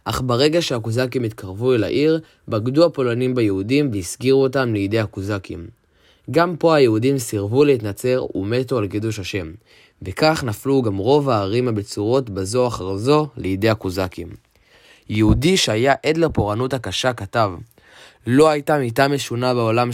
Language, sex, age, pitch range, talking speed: Hebrew, male, 20-39, 105-135 Hz, 130 wpm